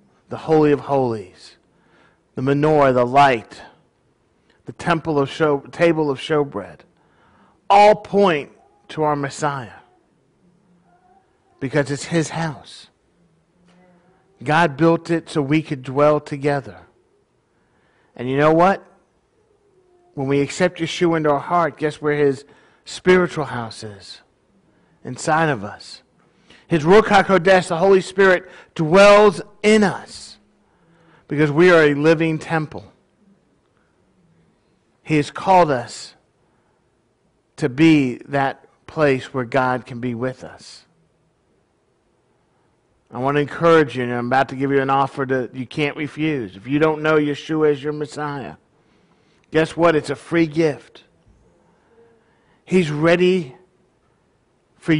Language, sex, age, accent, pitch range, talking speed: English, male, 50-69, American, 140-175 Hz, 125 wpm